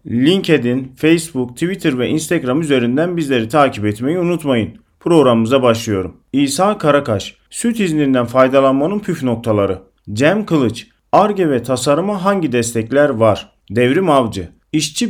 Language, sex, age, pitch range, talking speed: Turkish, male, 40-59, 115-165 Hz, 120 wpm